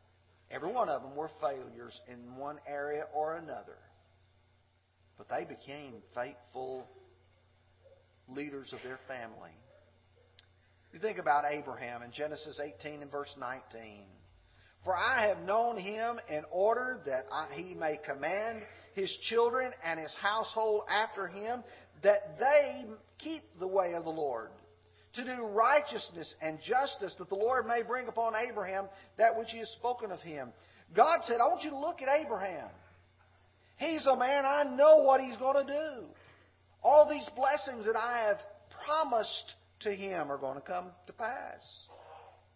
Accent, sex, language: American, male, English